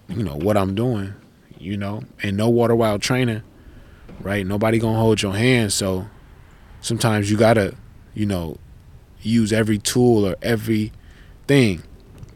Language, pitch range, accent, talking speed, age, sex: English, 100-115 Hz, American, 145 wpm, 20-39, male